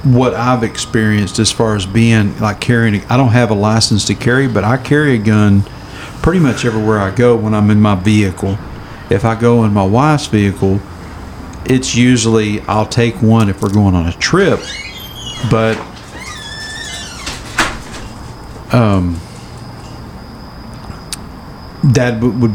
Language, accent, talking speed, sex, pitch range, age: English, American, 140 wpm, male, 100-120 Hz, 50-69